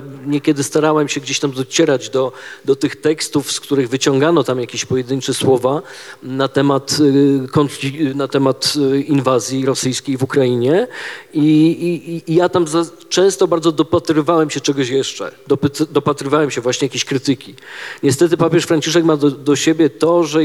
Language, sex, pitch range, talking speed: Polish, male, 135-160 Hz, 145 wpm